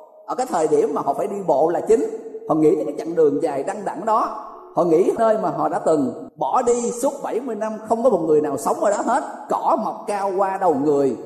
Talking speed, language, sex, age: 255 wpm, Vietnamese, male, 30-49